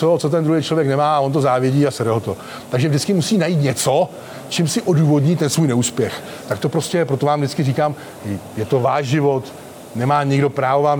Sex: male